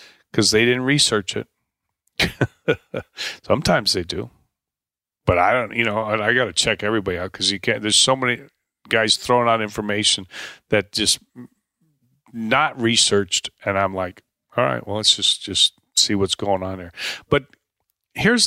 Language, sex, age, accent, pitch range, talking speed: English, male, 40-59, American, 100-130 Hz, 160 wpm